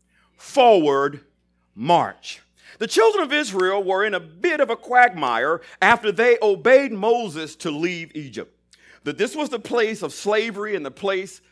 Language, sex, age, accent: English, male, 50-69, American